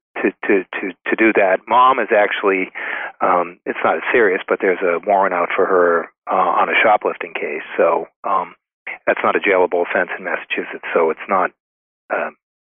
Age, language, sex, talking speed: 40-59, English, male, 185 wpm